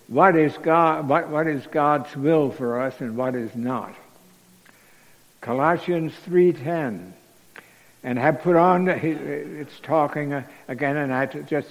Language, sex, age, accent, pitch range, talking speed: English, male, 60-79, American, 135-175 Hz, 135 wpm